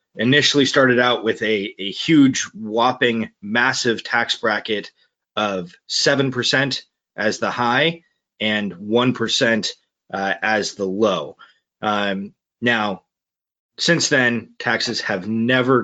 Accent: American